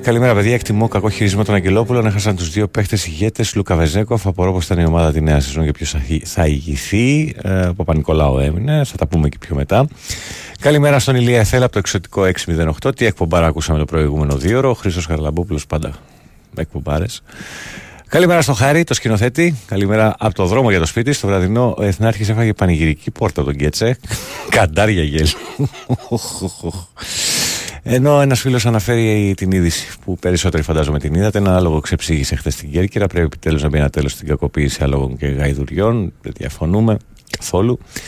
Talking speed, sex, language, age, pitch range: 165 wpm, male, Greek, 40-59, 80-110 Hz